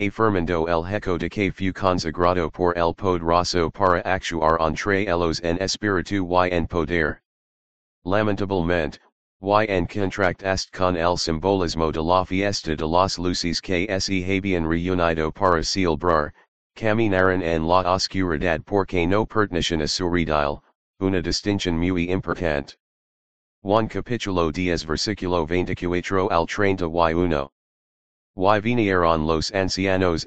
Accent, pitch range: American, 85-95 Hz